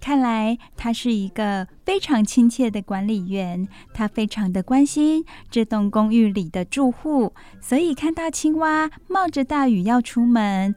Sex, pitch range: female, 210-270 Hz